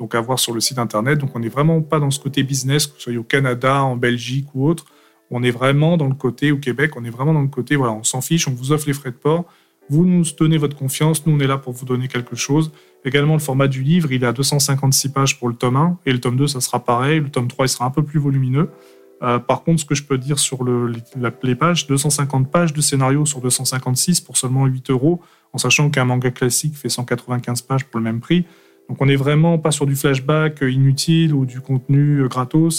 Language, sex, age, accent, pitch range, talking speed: French, male, 30-49, French, 125-150 Hz, 260 wpm